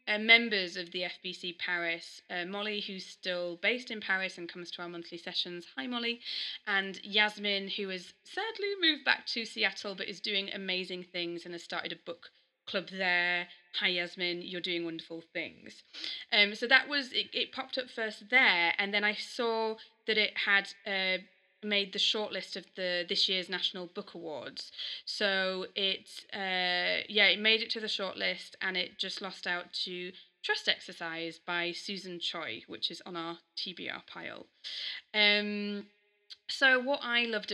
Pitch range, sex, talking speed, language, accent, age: 175-215 Hz, female, 175 wpm, English, British, 30-49